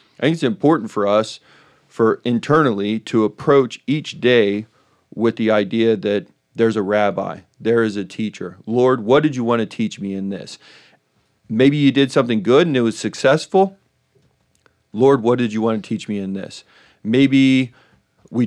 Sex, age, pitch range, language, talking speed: male, 40-59, 105-135 Hz, English, 175 wpm